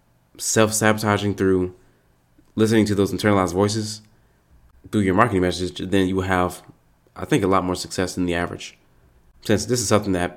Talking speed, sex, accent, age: 175 wpm, male, American, 20-39